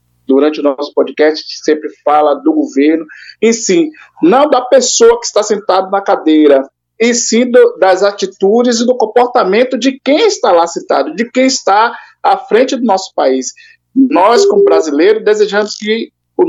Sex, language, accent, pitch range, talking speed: male, Portuguese, Brazilian, 180-275 Hz, 170 wpm